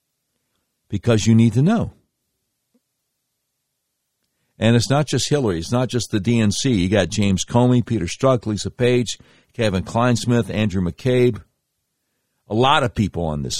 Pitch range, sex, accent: 105-140 Hz, male, American